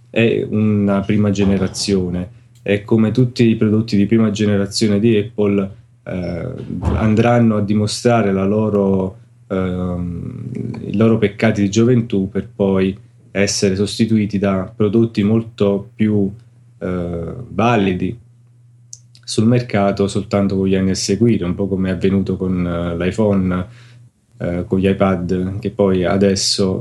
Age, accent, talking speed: 20-39, native, 130 wpm